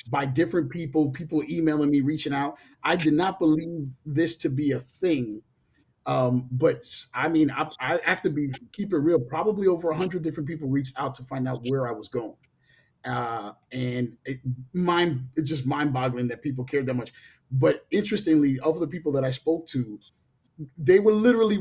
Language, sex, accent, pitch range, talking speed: English, male, American, 125-160 Hz, 190 wpm